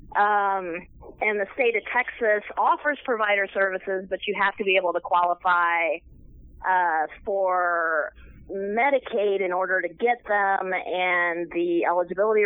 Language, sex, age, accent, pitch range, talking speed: English, female, 30-49, American, 175-215 Hz, 135 wpm